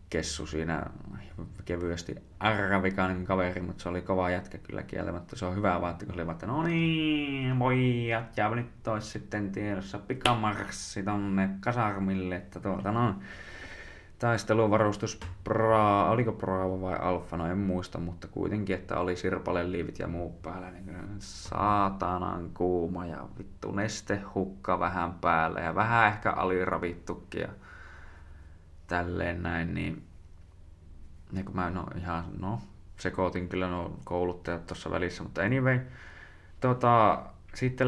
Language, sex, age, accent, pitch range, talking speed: Finnish, male, 20-39, native, 90-105 Hz, 120 wpm